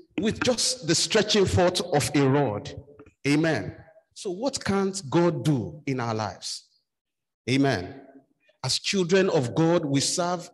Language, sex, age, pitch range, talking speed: English, male, 50-69, 145-205 Hz, 135 wpm